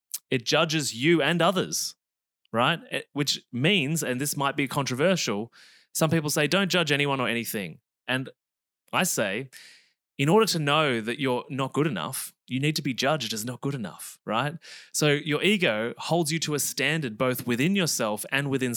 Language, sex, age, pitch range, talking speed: English, male, 20-39, 110-145 Hz, 180 wpm